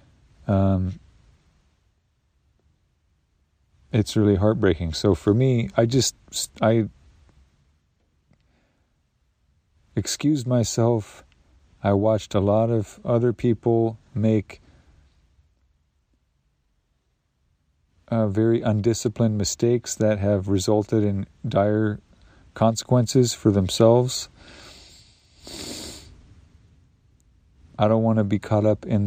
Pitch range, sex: 90-115 Hz, male